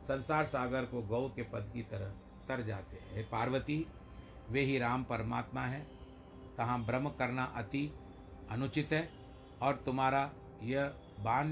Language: Hindi